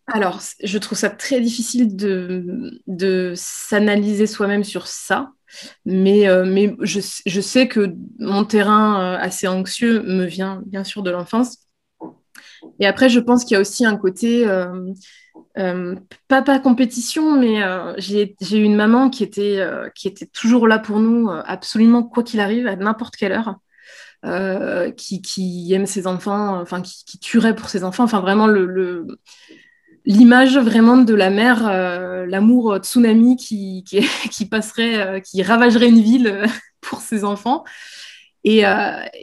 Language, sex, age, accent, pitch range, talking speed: French, female, 20-39, French, 190-235 Hz, 160 wpm